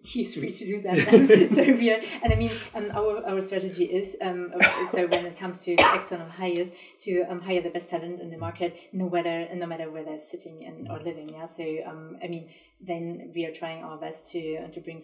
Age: 30-49